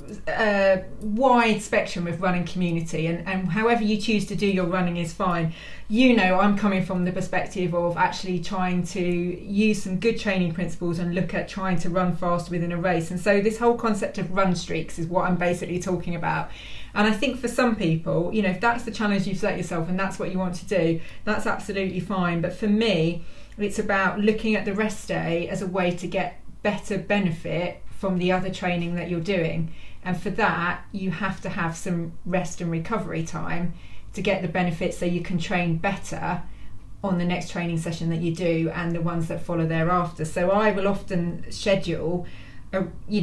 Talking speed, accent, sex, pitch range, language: 205 wpm, British, female, 170-195 Hz, English